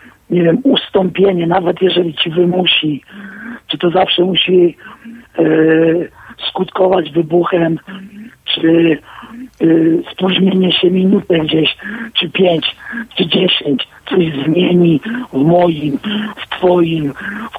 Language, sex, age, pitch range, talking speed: Polish, male, 50-69, 165-205 Hz, 105 wpm